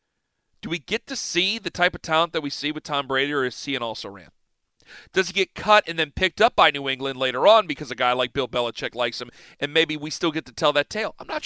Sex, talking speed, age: male, 265 wpm, 40-59